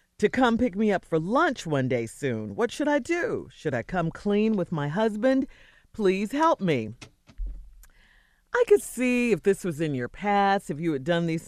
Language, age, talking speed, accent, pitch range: English, 40-59, 200 wpm, American, 155-225 Hz